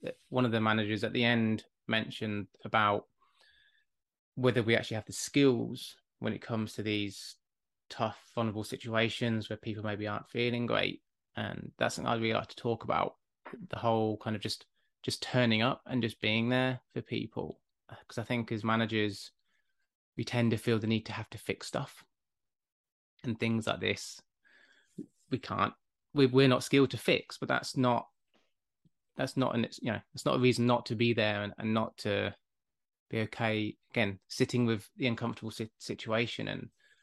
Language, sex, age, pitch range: English, male, 20-39, 110-125 Hz